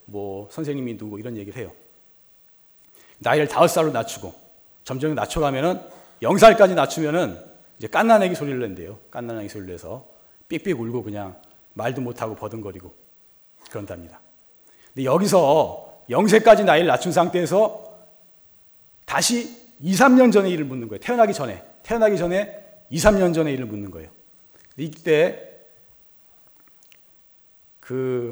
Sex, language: male, Korean